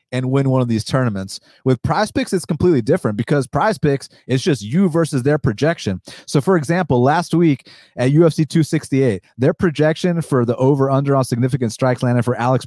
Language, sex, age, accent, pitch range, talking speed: English, male, 30-49, American, 125-150 Hz, 195 wpm